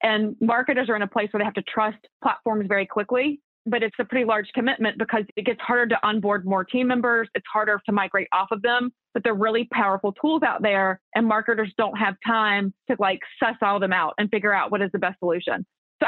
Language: English